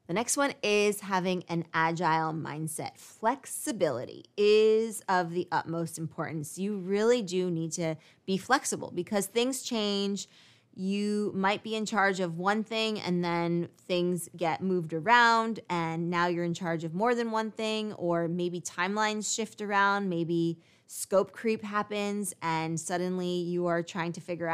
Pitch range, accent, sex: 170-210 Hz, American, female